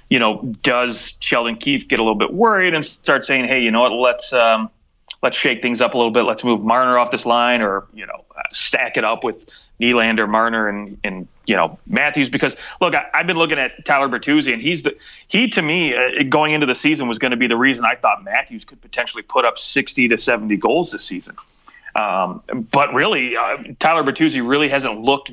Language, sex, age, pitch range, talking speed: English, male, 30-49, 110-150 Hz, 225 wpm